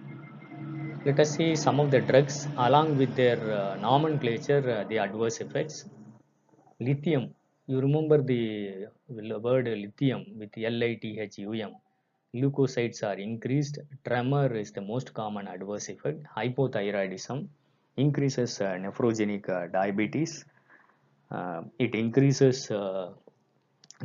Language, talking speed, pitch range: Tamil, 125 wpm, 105-135 Hz